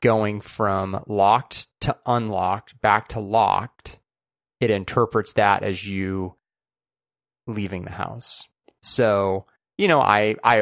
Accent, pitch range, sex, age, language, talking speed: American, 95-125 Hz, male, 30-49, English, 120 wpm